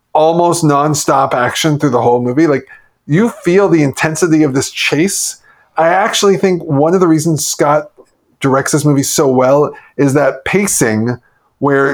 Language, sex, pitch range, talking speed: English, male, 135-170 Hz, 160 wpm